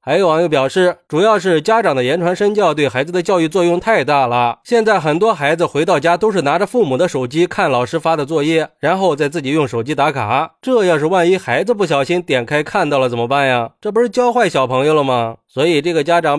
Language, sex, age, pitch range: Chinese, male, 20-39, 135-185 Hz